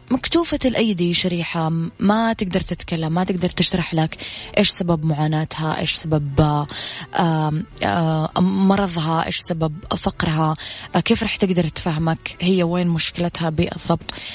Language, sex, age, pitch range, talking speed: English, female, 20-39, 155-180 Hz, 120 wpm